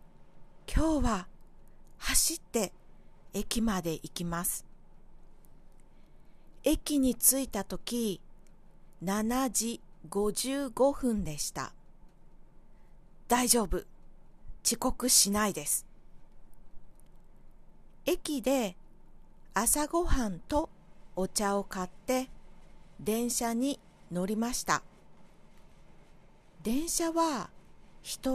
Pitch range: 180-250 Hz